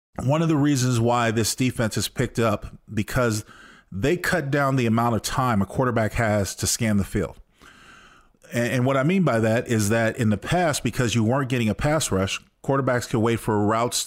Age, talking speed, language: 40-59, 210 wpm, English